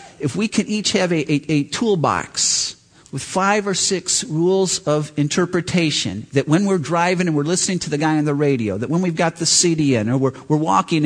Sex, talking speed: male, 215 wpm